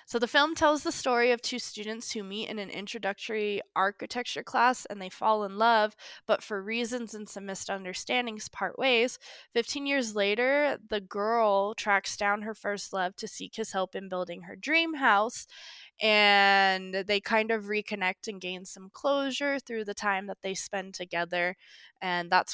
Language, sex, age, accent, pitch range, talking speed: English, female, 20-39, American, 190-235 Hz, 175 wpm